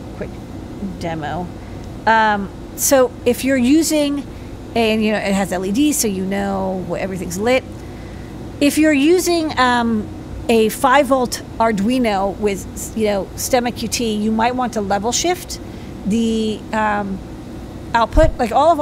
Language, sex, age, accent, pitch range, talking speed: English, female, 40-59, American, 205-260 Hz, 135 wpm